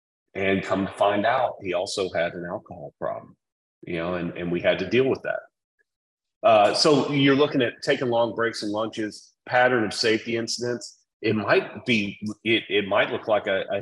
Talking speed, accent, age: 195 wpm, American, 30-49